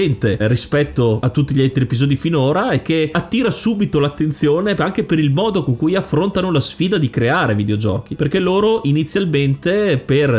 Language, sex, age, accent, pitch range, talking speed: Italian, male, 30-49, native, 130-165 Hz, 160 wpm